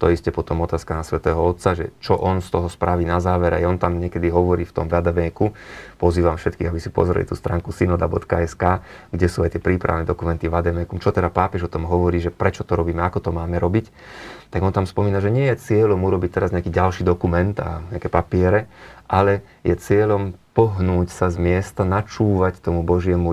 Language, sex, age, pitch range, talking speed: Slovak, male, 30-49, 85-100 Hz, 200 wpm